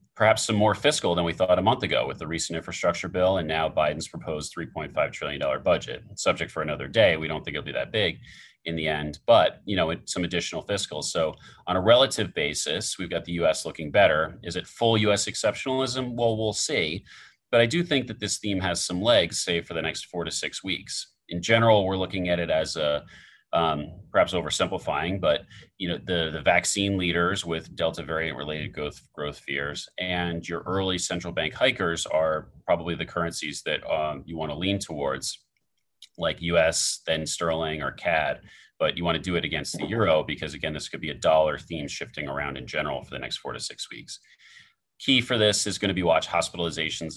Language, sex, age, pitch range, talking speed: English, male, 30-49, 80-100 Hz, 210 wpm